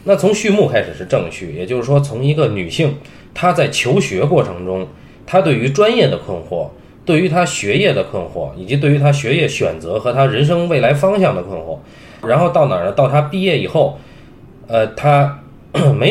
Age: 20-39